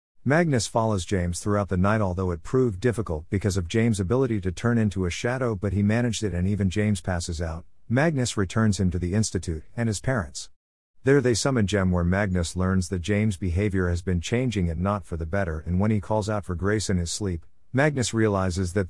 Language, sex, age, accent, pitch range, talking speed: English, male, 50-69, American, 90-110 Hz, 215 wpm